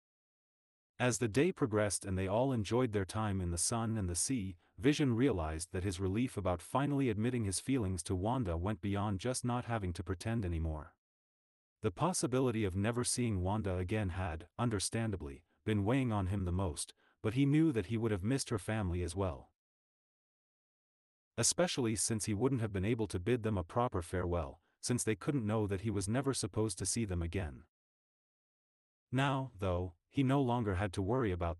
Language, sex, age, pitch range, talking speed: English, male, 30-49, 95-120 Hz, 185 wpm